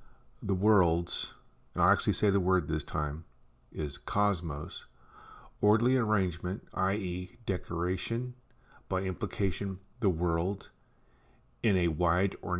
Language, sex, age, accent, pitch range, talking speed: English, male, 50-69, American, 90-115 Hz, 115 wpm